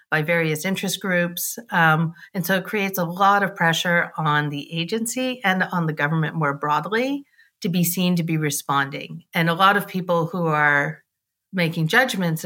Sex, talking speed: female, 180 wpm